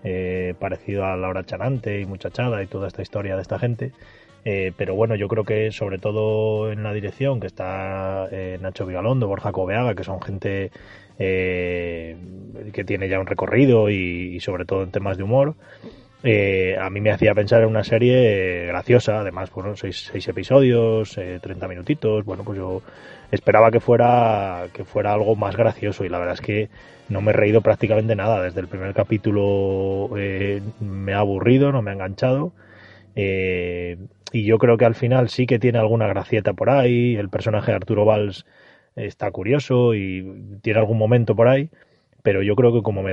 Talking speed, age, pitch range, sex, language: 190 wpm, 20-39, 95-115 Hz, male, Spanish